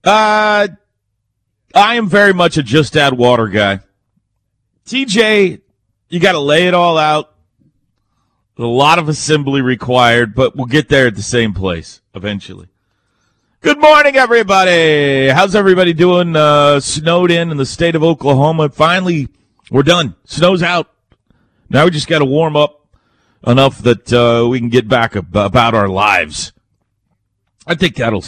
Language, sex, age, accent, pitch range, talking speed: English, male, 40-59, American, 115-170 Hz, 150 wpm